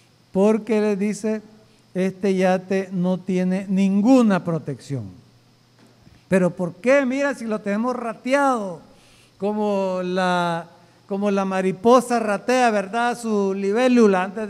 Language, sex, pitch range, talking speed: Spanish, male, 180-235 Hz, 110 wpm